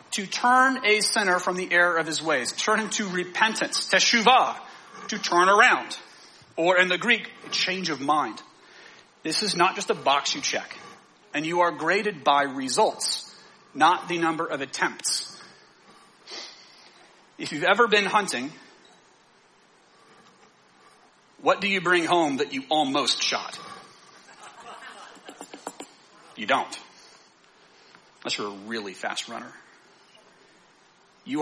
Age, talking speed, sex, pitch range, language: 40-59, 130 wpm, male, 150-220 Hz, English